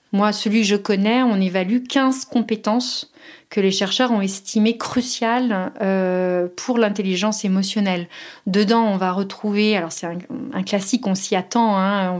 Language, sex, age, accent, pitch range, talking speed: French, female, 30-49, French, 190-230 Hz, 155 wpm